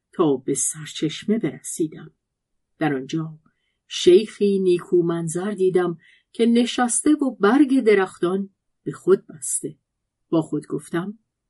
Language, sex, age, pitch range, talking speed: Persian, female, 50-69, 155-235 Hz, 105 wpm